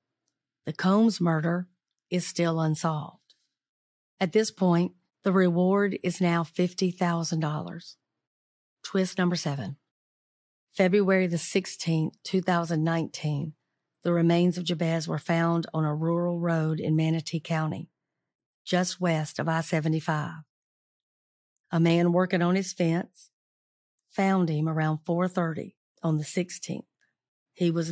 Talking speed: 115 wpm